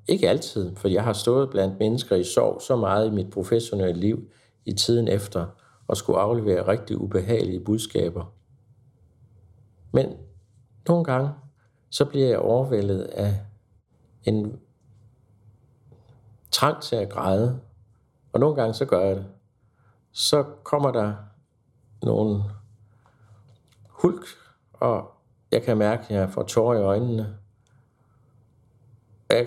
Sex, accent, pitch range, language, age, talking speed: male, native, 100-120 Hz, Danish, 60-79, 125 wpm